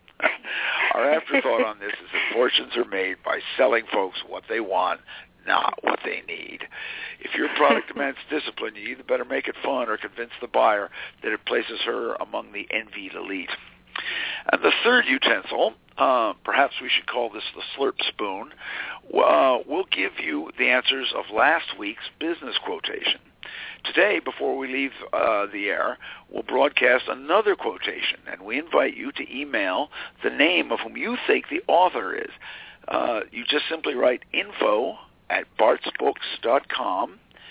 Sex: male